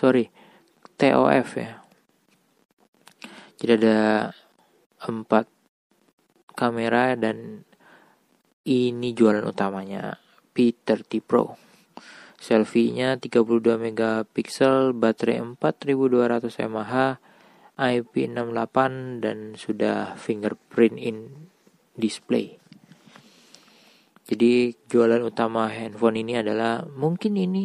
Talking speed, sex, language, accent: 70 wpm, male, Indonesian, native